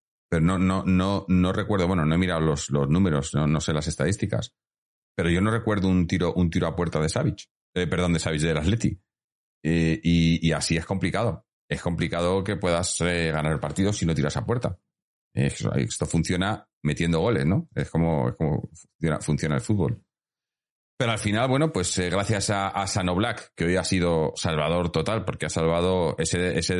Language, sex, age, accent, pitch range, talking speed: Spanish, male, 30-49, Spanish, 85-100 Hz, 200 wpm